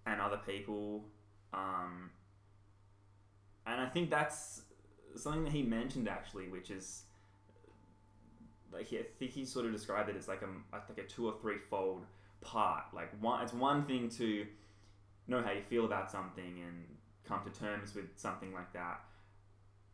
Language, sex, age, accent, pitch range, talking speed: English, male, 10-29, Australian, 100-110 Hz, 165 wpm